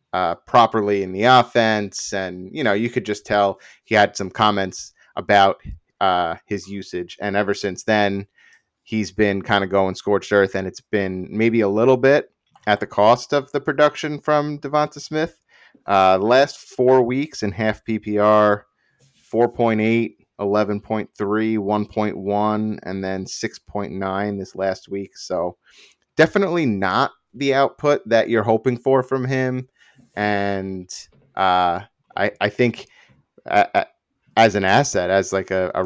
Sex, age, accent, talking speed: male, 30-49, American, 145 wpm